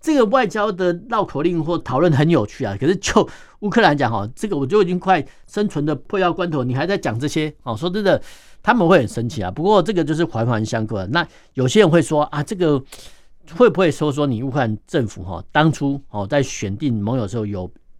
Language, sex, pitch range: Chinese, male, 115-170 Hz